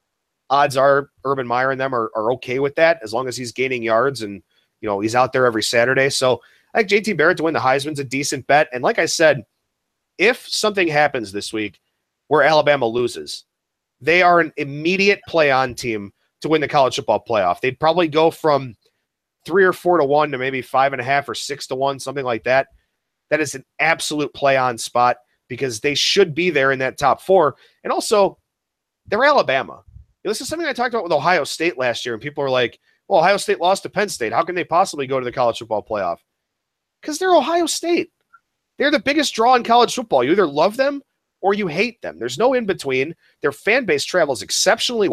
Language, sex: English, male